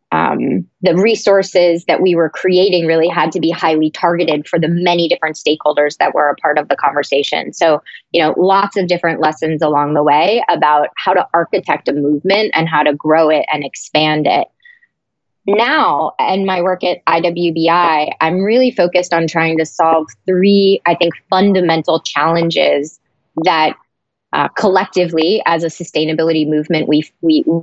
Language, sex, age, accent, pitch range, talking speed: English, female, 20-39, American, 155-185 Hz, 165 wpm